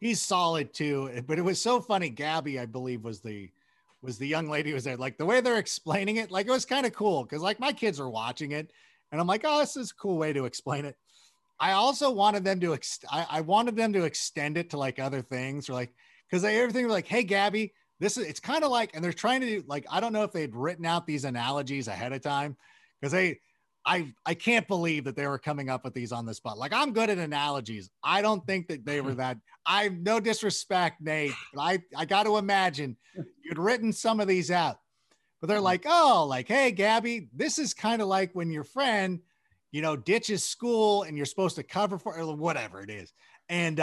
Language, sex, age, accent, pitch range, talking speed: English, male, 30-49, American, 140-215 Hz, 240 wpm